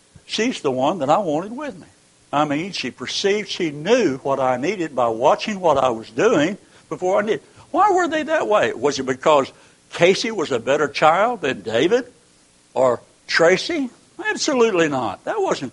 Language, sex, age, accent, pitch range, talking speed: English, male, 60-79, American, 150-230 Hz, 180 wpm